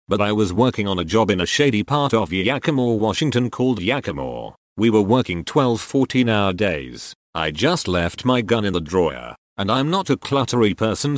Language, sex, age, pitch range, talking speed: English, male, 40-59, 100-125 Hz, 195 wpm